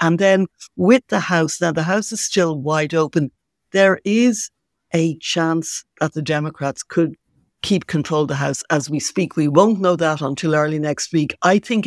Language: English